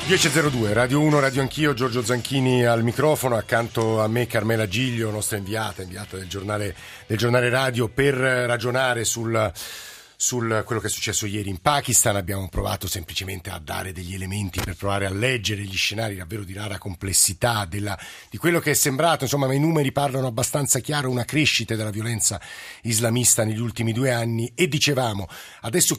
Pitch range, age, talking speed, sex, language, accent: 105-130 Hz, 50-69, 170 wpm, male, Italian, native